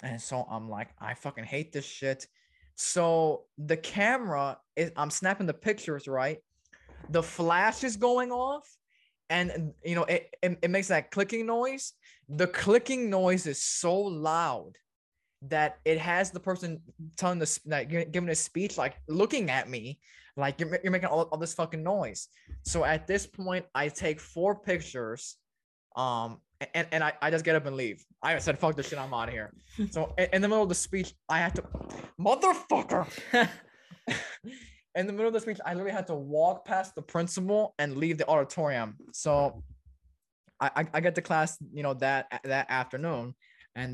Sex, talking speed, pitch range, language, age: male, 180 wpm, 140-190 Hz, English, 20-39